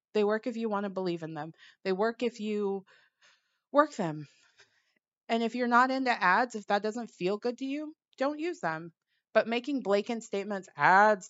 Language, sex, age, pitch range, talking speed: English, female, 30-49, 200-275 Hz, 190 wpm